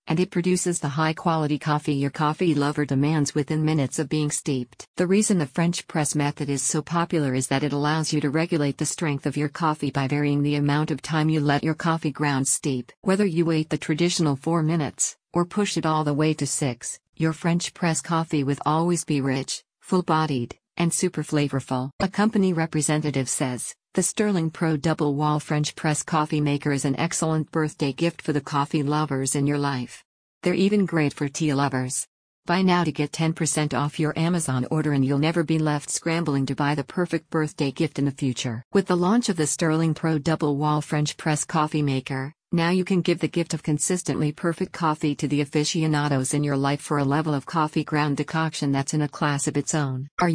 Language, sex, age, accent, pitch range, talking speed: English, female, 50-69, American, 145-165 Hz, 205 wpm